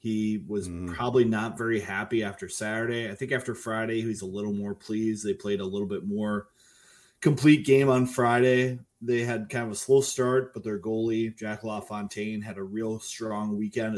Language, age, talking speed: English, 20-39, 195 wpm